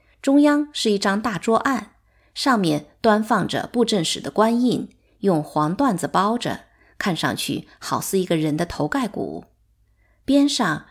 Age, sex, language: 20-39, female, Chinese